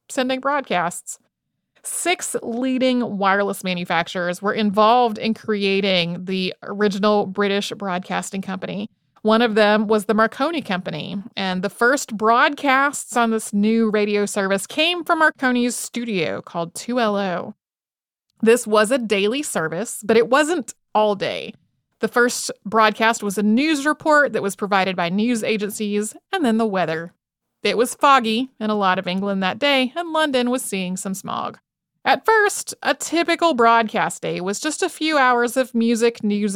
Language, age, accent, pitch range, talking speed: English, 30-49, American, 200-255 Hz, 155 wpm